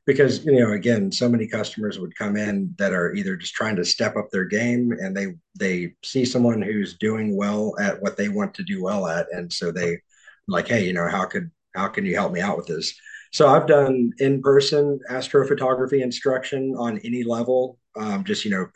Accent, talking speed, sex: American, 210 wpm, male